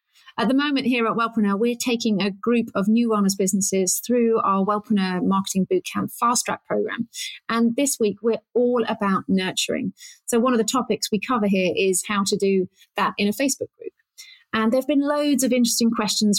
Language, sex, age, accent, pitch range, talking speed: English, female, 30-49, British, 195-230 Hz, 200 wpm